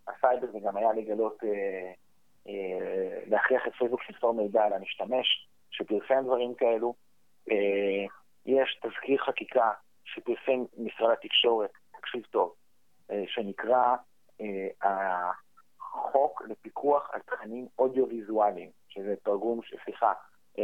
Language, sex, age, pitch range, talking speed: Hebrew, male, 40-59, 105-130 Hz, 110 wpm